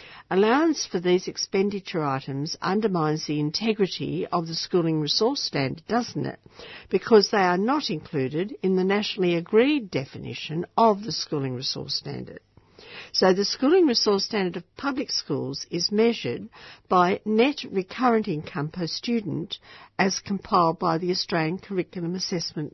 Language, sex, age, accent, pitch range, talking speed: English, female, 60-79, Australian, 155-210 Hz, 140 wpm